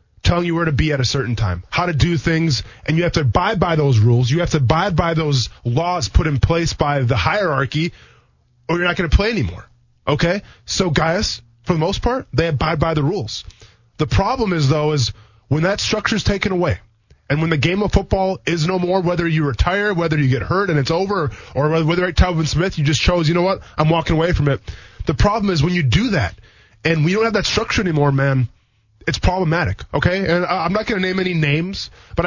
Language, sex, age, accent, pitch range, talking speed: English, male, 20-39, American, 120-175 Hz, 235 wpm